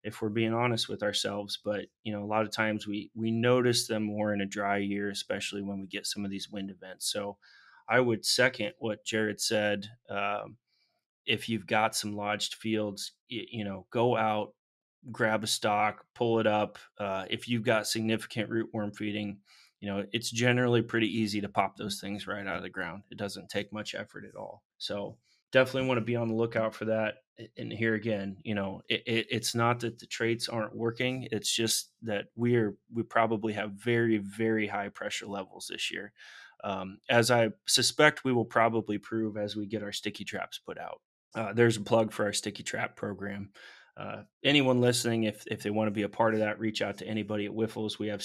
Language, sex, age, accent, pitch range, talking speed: English, male, 30-49, American, 105-115 Hz, 210 wpm